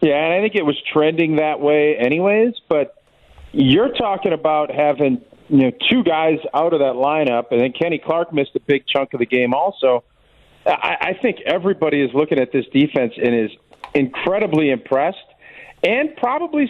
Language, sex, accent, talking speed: English, male, American, 180 wpm